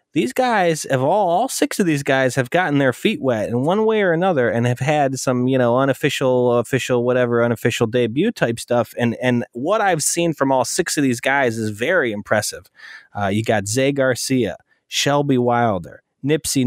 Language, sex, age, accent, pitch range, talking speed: English, male, 20-39, American, 120-155 Hz, 195 wpm